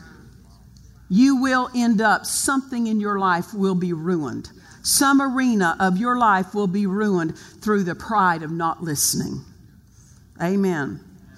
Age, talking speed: 50-69, 135 wpm